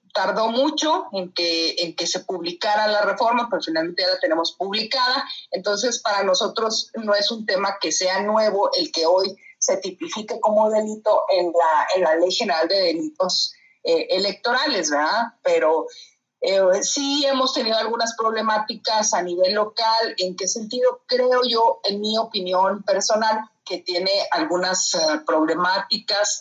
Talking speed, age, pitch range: 155 wpm, 40-59, 185-235 Hz